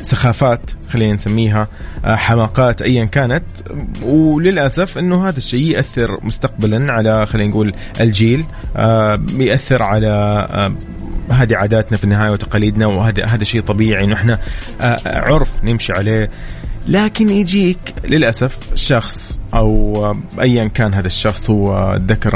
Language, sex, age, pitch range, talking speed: Arabic, male, 20-39, 110-135 Hz, 105 wpm